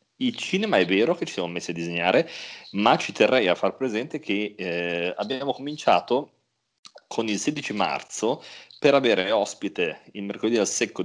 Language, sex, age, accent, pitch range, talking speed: Italian, male, 30-49, native, 95-120 Hz, 170 wpm